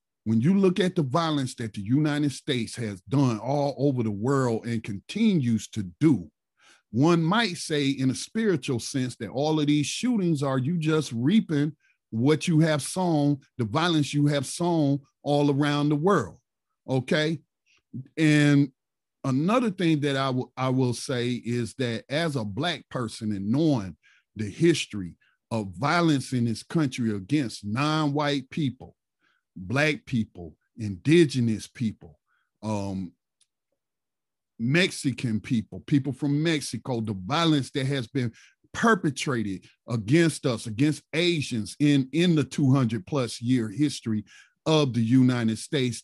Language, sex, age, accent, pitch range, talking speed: English, male, 50-69, American, 115-155 Hz, 140 wpm